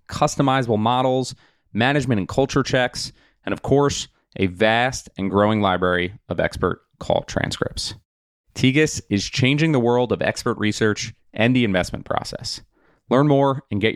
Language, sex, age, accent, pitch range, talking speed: English, male, 30-49, American, 100-130 Hz, 145 wpm